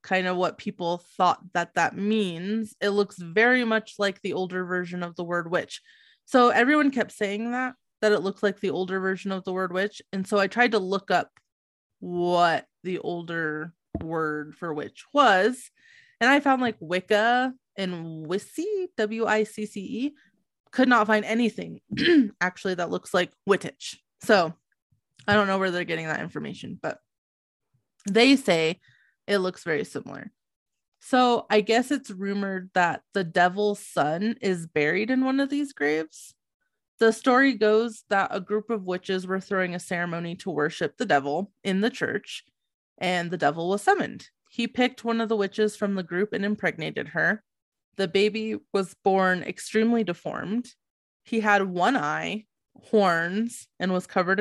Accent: American